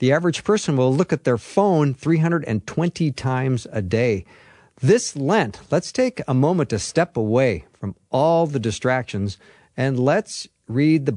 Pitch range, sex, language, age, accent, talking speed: 115-160 Hz, male, English, 50-69, American, 155 wpm